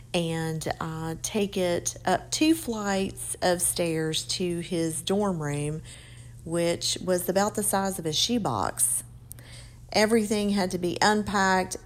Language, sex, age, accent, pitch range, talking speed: English, female, 40-59, American, 150-190 Hz, 130 wpm